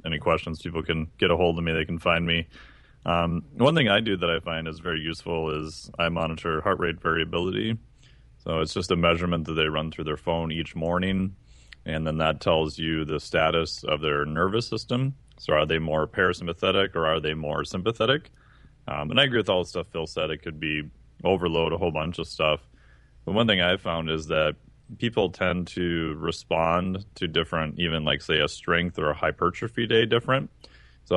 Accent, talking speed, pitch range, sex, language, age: American, 205 wpm, 80-95 Hz, male, English, 30-49